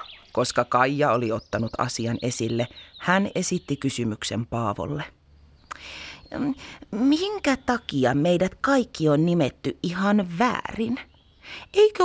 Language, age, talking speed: Finnish, 30-49, 95 wpm